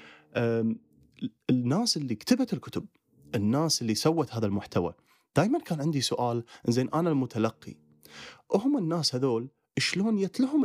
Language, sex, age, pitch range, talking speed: Arabic, male, 30-49, 105-155 Hz, 120 wpm